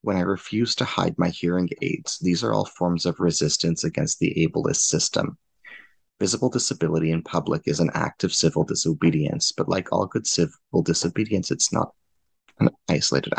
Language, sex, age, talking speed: English, male, 30-49, 170 wpm